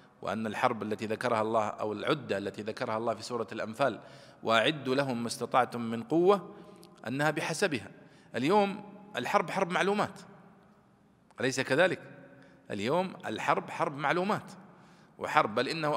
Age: 40-59